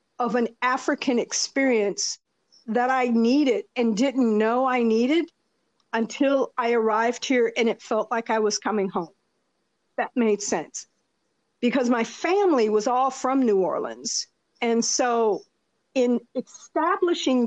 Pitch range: 220-265 Hz